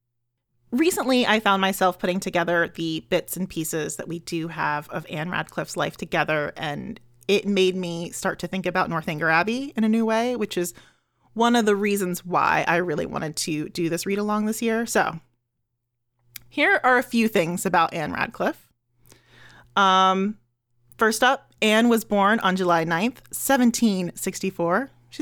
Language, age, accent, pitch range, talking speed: English, 30-49, American, 155-215 Hz, 160 wpm